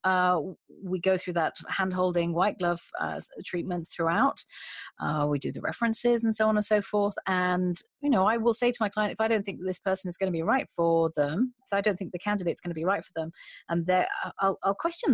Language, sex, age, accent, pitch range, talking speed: English, female, 40-59, British, 160-195 Hz, 240 wpm